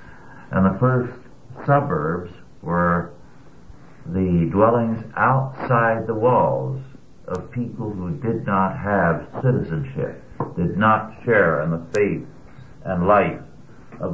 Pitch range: 95-125 Hz